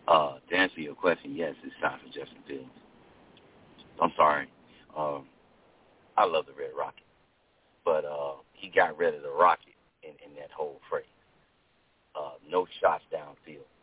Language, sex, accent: English, male, American